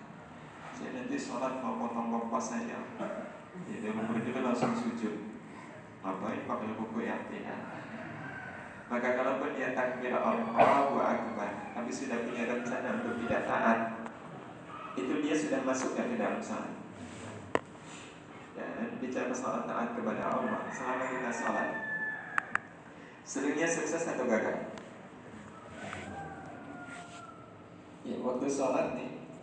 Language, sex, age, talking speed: Indonesian, male, 30-49, 100 wpm